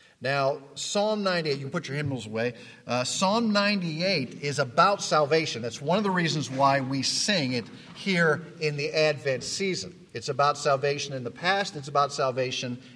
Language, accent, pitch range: English, American, 130-165 Hz